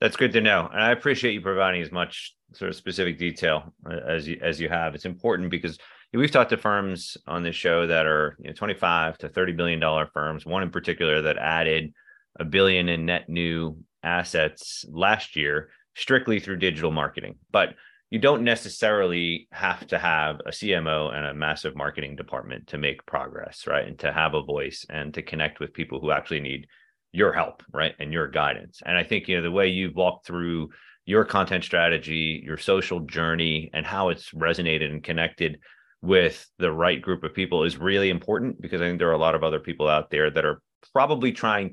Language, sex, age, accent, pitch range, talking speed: English, male, 30-49, American, 80-95 Hz, 195 wpm